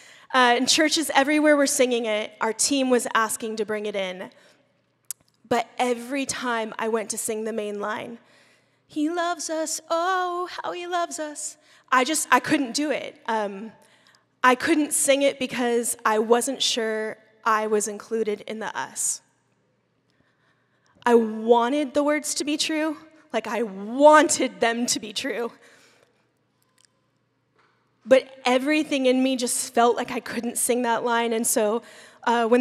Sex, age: female, 20-39